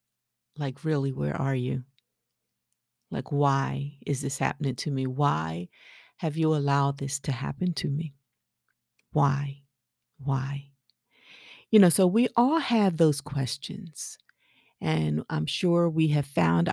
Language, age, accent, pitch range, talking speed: English, 40-59, American, 130-160 Hz, 135 wpm